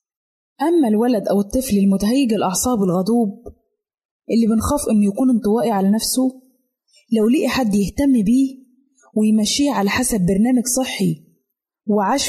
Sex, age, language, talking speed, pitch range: female, 20-39, Arabic, 120 wpm, 210-265 Hz